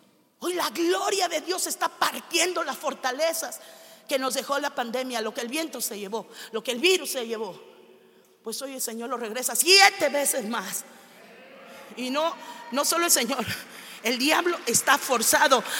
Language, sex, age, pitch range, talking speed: Spanish, female, 40-59, 235-300 Hz, 170 wpm